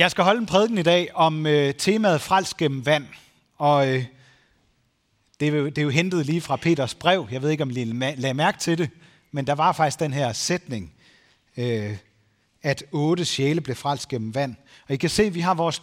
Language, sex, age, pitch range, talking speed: Danish, male, 30-49, 130-175 Hz, 210 wpm